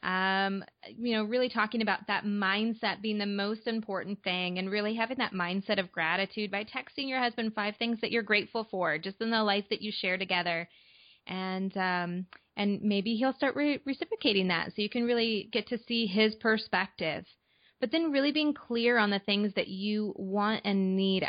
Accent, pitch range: American, 190-225 Hz